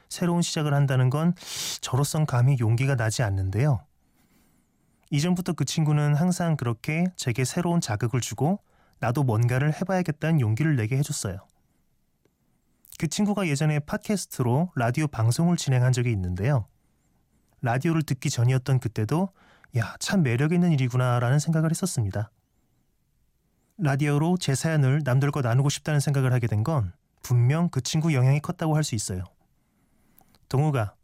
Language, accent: Korean, native